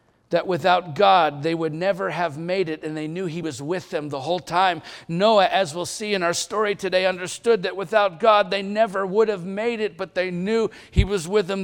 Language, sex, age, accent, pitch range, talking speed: English, male, 50-69, American, 175-240 Hz, 225 wpm